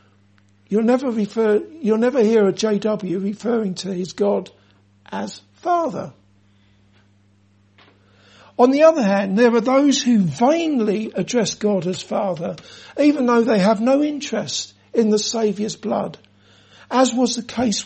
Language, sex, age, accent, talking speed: English, male, 60-79, British, 140 wpm